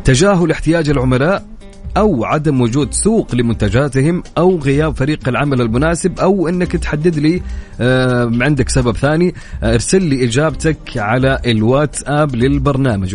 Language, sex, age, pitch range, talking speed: Arabic, male, 30-49, 120-165 Hz, 120 wpm